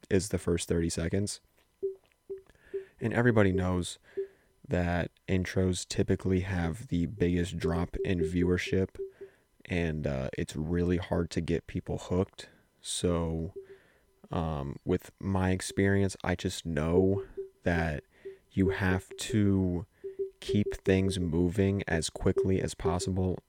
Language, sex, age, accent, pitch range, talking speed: English, male, 20-39, American, 85-100 Hz, 115 wpm